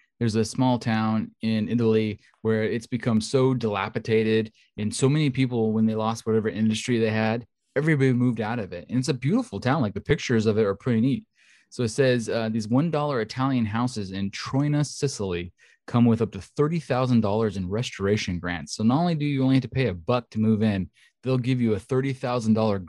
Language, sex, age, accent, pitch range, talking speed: English, male, 20-39, American, 110-130 Hz, 205 wpm